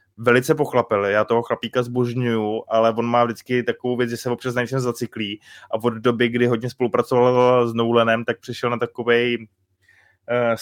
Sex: male